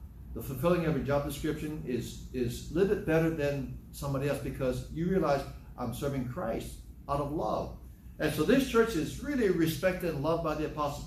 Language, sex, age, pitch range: English, male, 60-79, 135-175 Hz